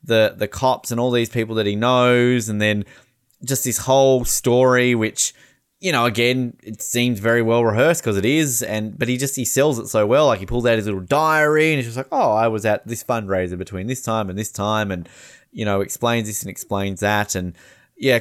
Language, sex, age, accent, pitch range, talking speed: English, male, 20-39, Australian, 105-155 Hz, 230 wpm